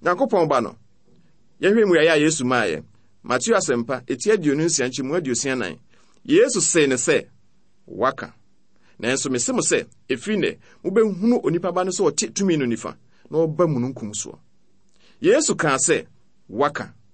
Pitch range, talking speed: 140-235 Hz, 145 wpm